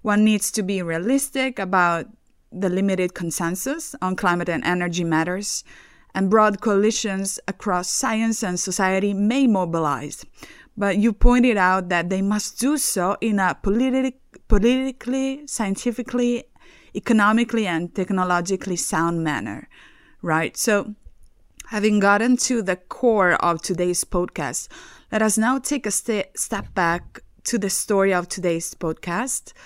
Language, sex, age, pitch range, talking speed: English, female, 20-39, 180-235 Hz, 130 wpm